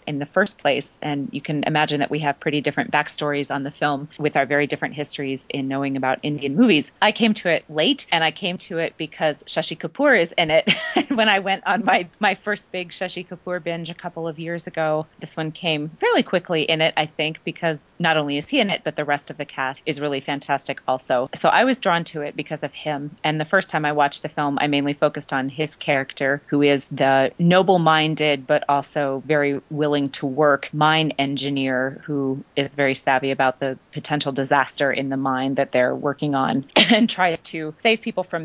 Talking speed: 220 wpm